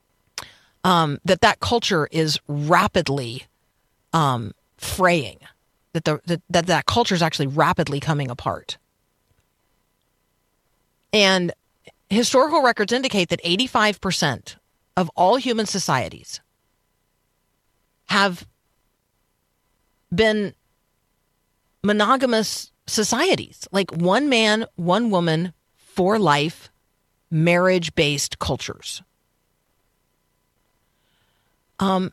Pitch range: 150-195 Hz